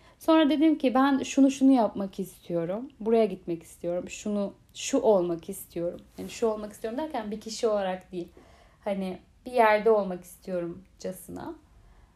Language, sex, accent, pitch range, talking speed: Turkish, female, native, 190-255 Hz, 145 wpm